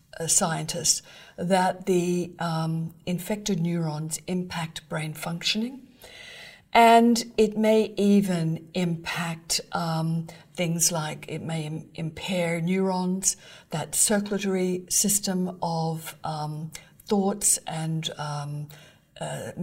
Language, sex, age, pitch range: English, female, 50-69, 165-190 Hz